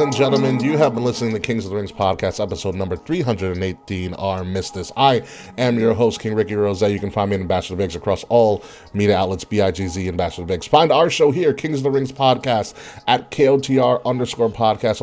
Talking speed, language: 220 wpm, English